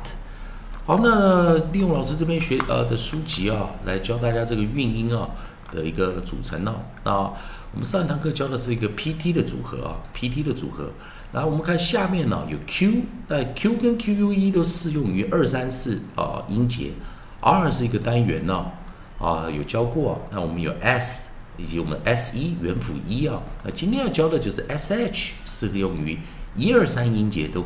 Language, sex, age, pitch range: Chinese, male, 50-69, 95-160 Hz